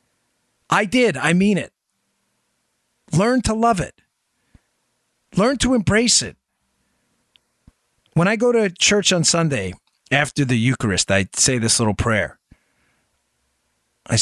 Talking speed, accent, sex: 120 wpm, American, male